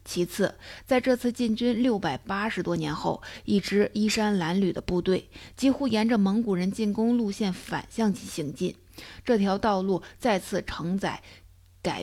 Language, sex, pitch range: Chinese, female, 180-215 Hz